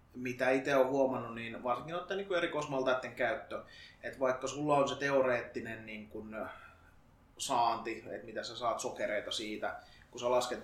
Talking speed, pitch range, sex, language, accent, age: 150 wpm, 120-135 Hz, male, Finnish, native, 20-39